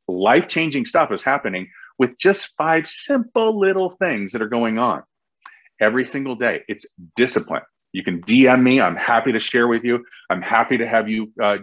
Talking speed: 180 wpm